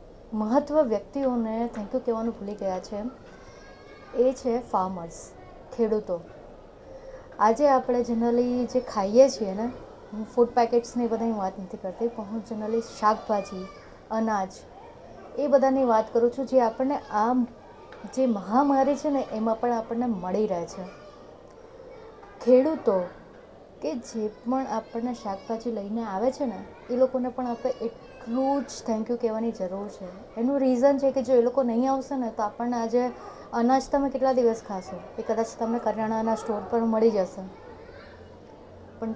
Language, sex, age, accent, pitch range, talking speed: Gujarati, female, 30-49, native, 215-265 Hz, 145 wpm